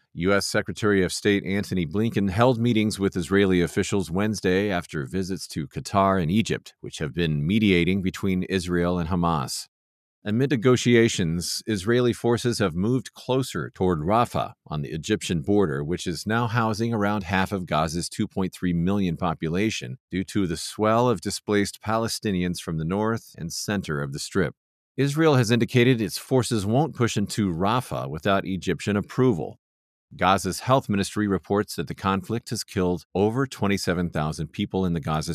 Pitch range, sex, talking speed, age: 90-115 Hz, male, 155 wpm, 40-59